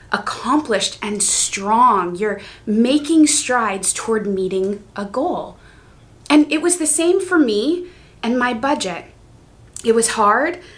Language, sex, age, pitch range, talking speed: English, female, 20-39, 210-300 Hz, 130 wpm